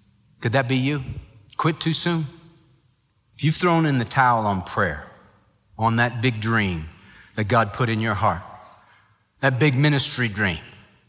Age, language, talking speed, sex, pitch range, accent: 40-59, English, 155 wpm, male, 110-150 Hz, American